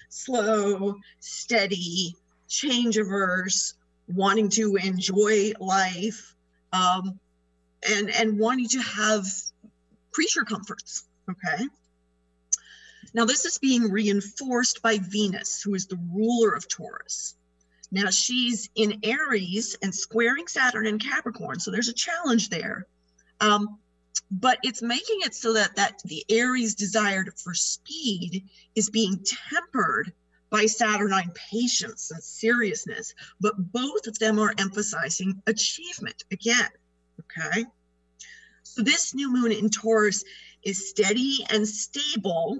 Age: 40-59